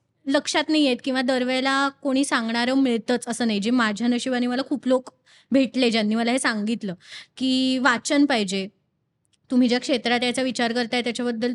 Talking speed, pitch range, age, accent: 150 wpm, 235-300 Hz, 20-39, native